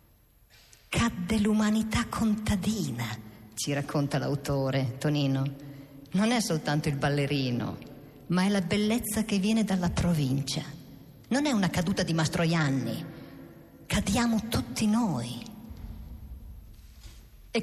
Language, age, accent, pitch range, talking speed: Italian, 50-69, native, 145-220 Hz, 100 wpm